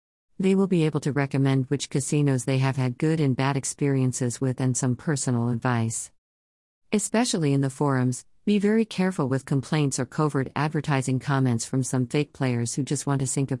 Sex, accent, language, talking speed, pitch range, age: female, American, English, 190 wpm, 125-155 Hz, 50-69